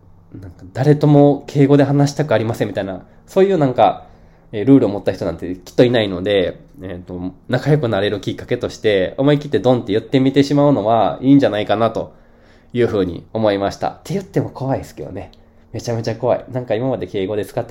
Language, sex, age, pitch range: Japanese, male, 20-39, 95-145 Hz